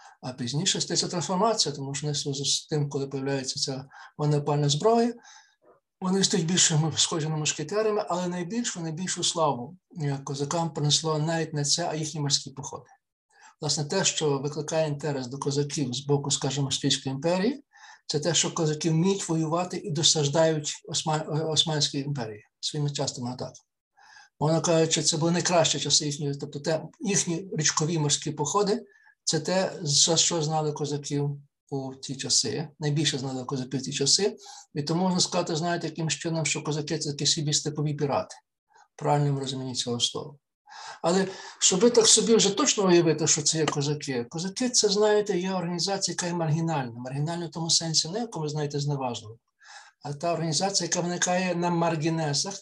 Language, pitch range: Ukrainian, 145-180 Hz